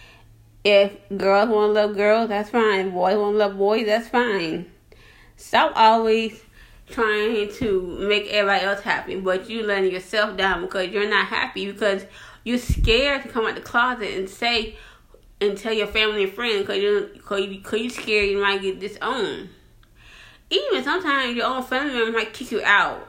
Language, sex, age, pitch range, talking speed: English, female, 20-39, 190-225 Hz, 175 wpm